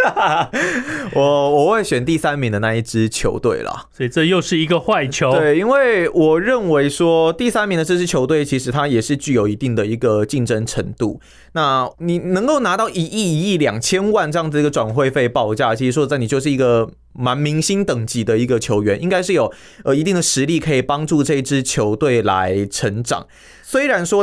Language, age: Chinese, 20-39